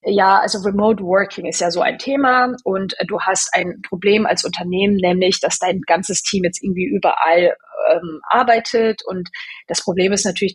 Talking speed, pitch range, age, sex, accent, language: 175 wpm, 185-225 Hz, 30-49, female, German, German